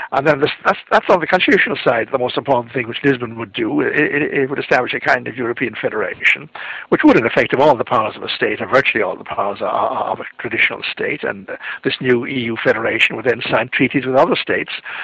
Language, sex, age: English, male, 60-79